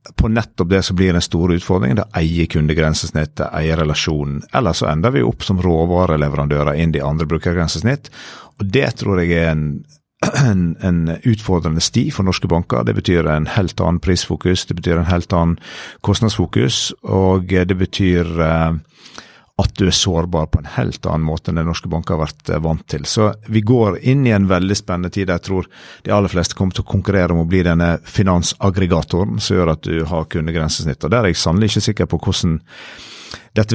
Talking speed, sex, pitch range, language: 195 wpm, male, 80-100 Hz, English